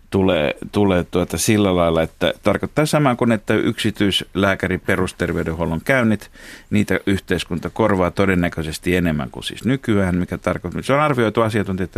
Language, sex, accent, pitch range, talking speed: Finnish, male, native, 90-115 Hz, 135 wpm